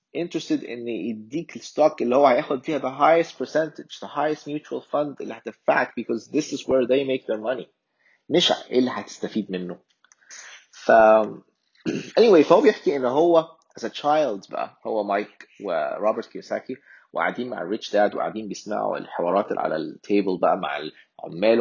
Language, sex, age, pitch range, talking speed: Arabic, male, 30-49, 100-140 Hz, 160 wpm